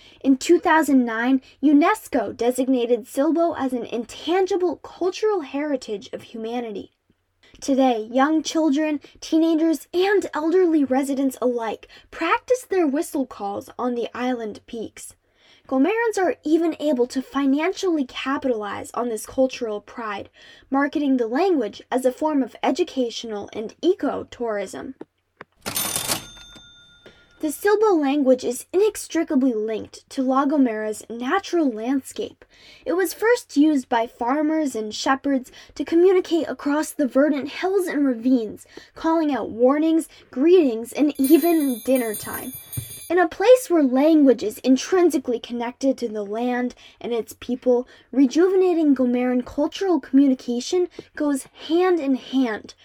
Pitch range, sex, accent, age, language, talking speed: 245-325 Hz, female, American, 10-29, English, 120 wpm